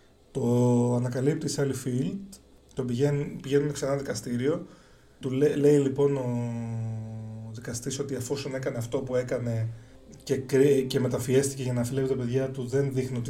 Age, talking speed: 30-49, 145 wpm